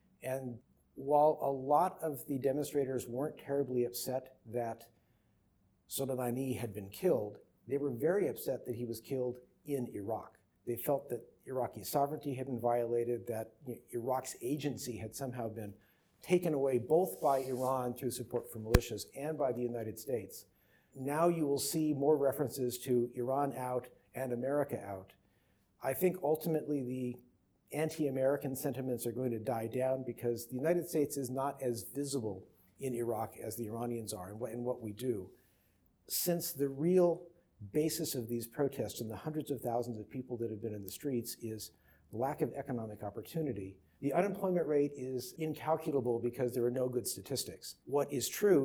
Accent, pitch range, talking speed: American, 120-140 Hz, 165 wpm